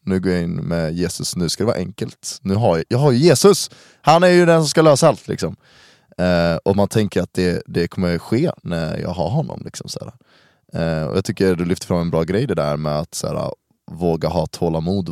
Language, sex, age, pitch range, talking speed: Swedish, male, 20-39, 80-105 Hz, 240 wpm